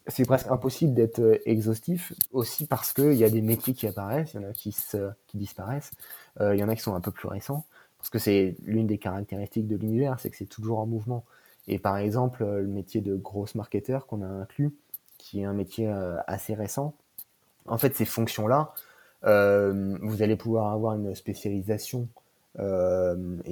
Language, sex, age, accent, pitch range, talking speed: French, male, 30-49, French, 100-120 Hz, 195 wpm